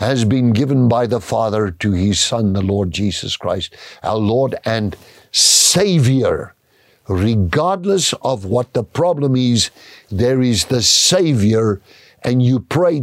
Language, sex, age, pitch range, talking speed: English, male, 60-79, 105-150 Hz, 140 wpm